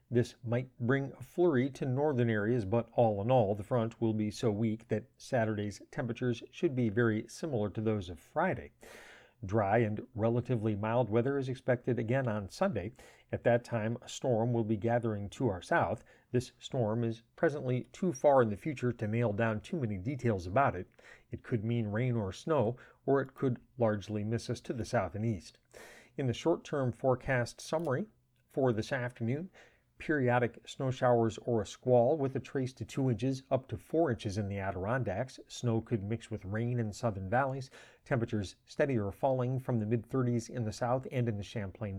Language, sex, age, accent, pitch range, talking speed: English, male, 40-59, American, 110-130 Hz, 190 wpm